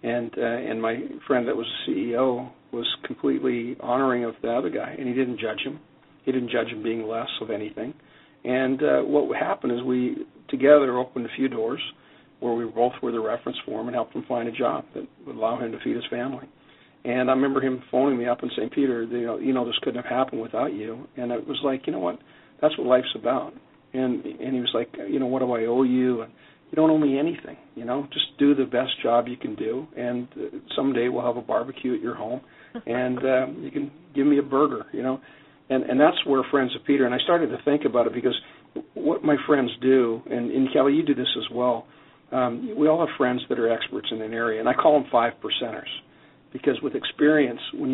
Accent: American